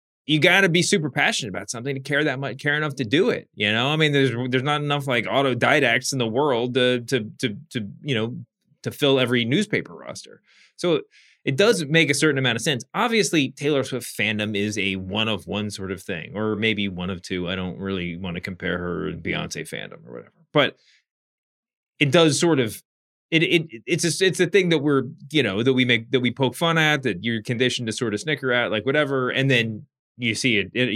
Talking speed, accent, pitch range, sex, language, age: 225 wpm, American, 120-155 Hz, male, English, 20-39